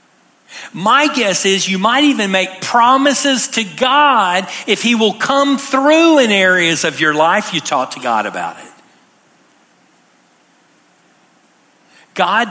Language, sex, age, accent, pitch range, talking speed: English, male, 50-69, American, 175-240 Hz, 130 wpm